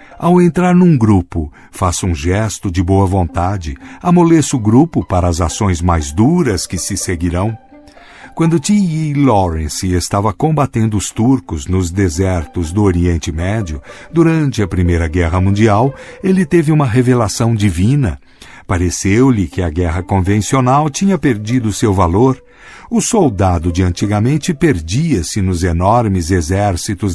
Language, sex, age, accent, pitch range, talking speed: Portuguese, male, 60-79, Brazilian, 90-135 Hz, 135 wpm